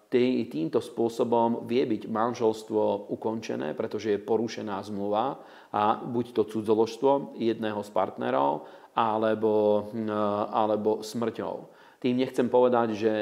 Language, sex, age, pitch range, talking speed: Slovak, male, 40-59, 105-115 Hz, 110 wpm